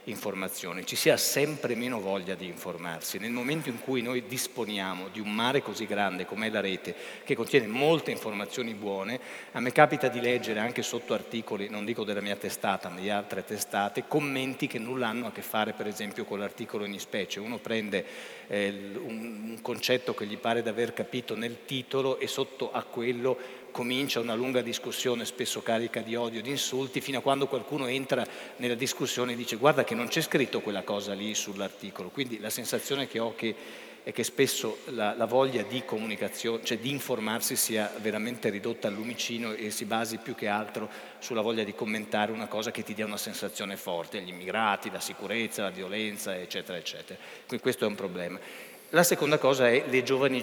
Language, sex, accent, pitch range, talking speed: Italian, male, native, 105-125 Hz, 190 wpm